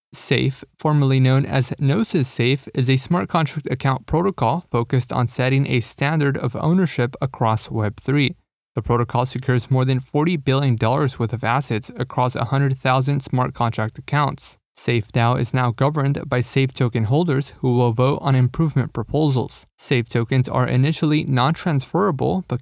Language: English